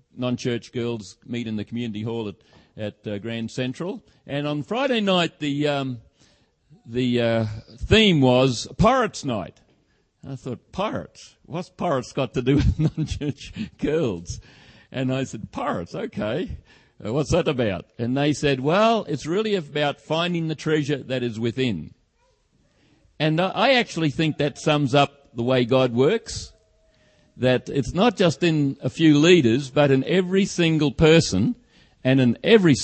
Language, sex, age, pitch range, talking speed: English, male, 50-69, 115-150 Hz, 155 wpm